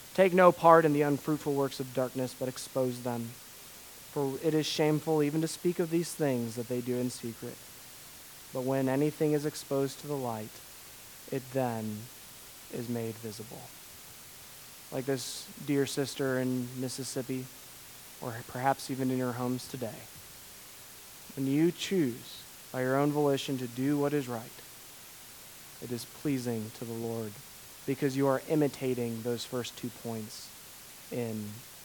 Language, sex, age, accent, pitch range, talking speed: English, male, 20-39, American, 125-150 Hz, 150 wpm